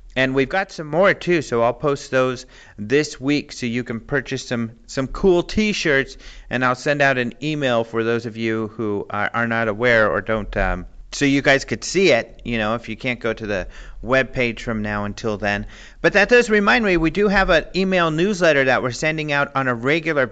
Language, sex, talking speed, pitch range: English, male, 220 wpm, 115-150 Hz